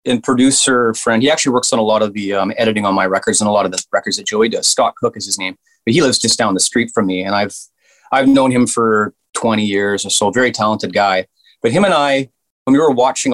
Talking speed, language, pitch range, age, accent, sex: 270 wpm, English, 100-120 Hz, 30-49, American, male